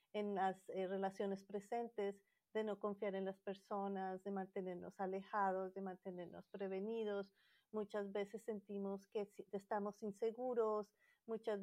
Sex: female